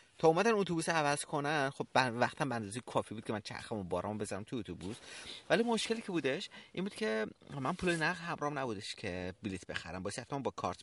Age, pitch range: 30-49, 95-125 Hz